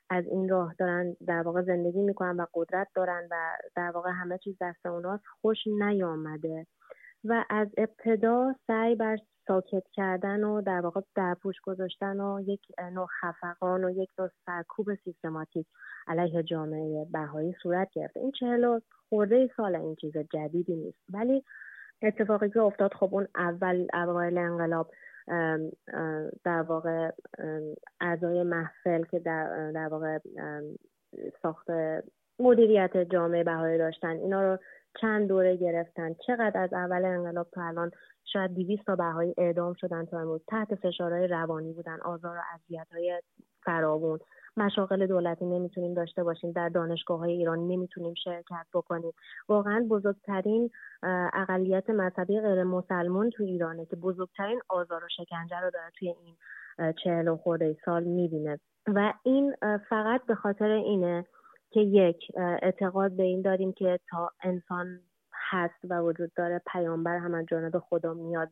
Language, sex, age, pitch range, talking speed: Persian, female, 30-49, 170-195 Hz, 140 wpm